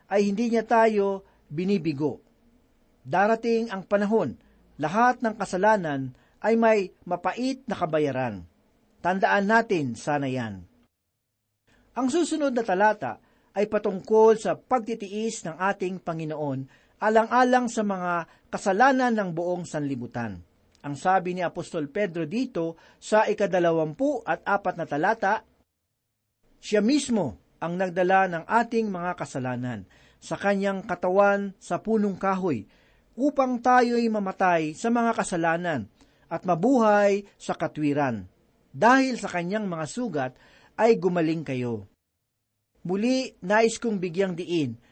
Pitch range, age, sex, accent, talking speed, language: 155-220 Hz, 50-69, male, native, 115 wpm, Filipino